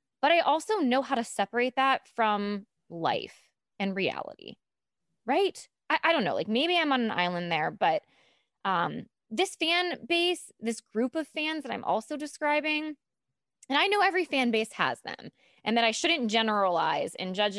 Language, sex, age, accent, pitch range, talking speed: English, female, 20-39, American, 205-290 Hz, 175 wpm